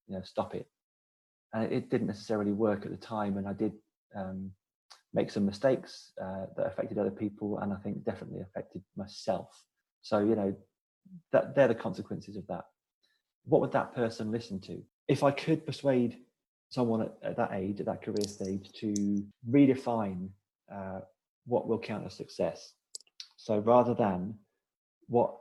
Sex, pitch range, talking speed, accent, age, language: male, 95-115 Hz, 165 wpm, British, 30-49, English